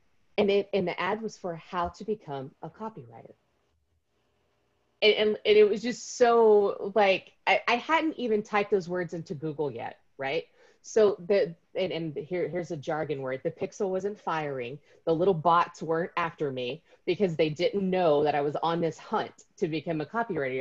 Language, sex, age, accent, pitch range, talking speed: English, female, 30-49, American, 150-200 Hz, 185 wpm